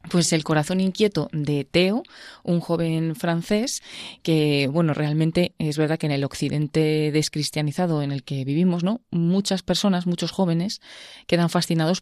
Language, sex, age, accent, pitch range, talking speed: Spanish, female, 20-39, Spanish, 150-190 Hz, 150 wpm